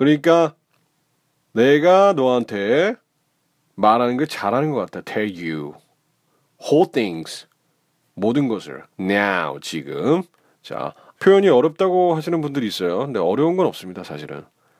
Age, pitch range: 30-49, 115-165 Hz